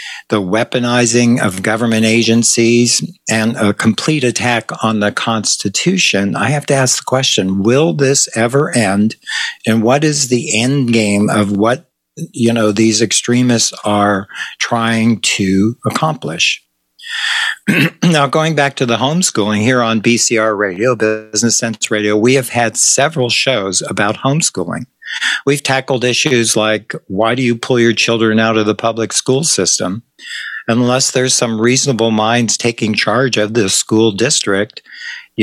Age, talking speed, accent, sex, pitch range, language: 60-79, 145 wpm, American, male, 110-130 Hz, English